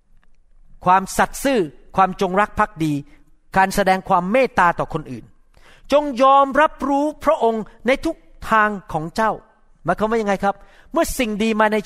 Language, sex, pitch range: Thai, male, 155-215 Hz